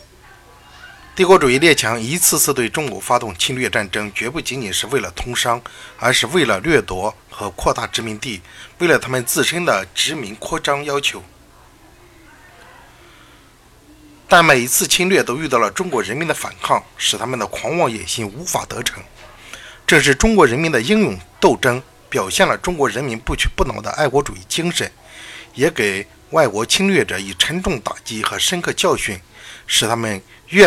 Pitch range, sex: 110-170 Hz, male